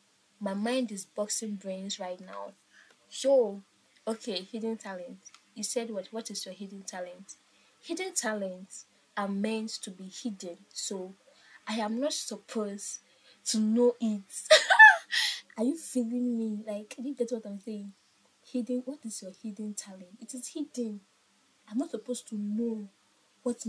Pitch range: 200-245 Hz